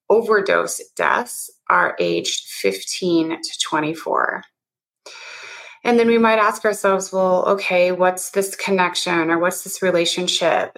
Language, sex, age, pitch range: English, female, 30-49, 175-215 Hz